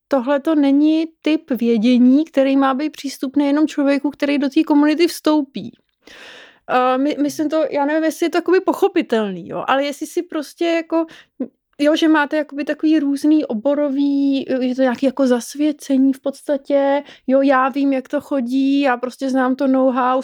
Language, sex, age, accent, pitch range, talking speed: English, female, 20-39, Czech, 260-295 Hz, 165 wpm